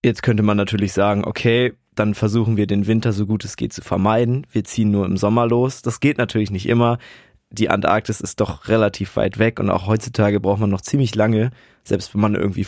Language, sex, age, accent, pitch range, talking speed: German, male, 20-39, German, 105-120 Hz, 220 wpm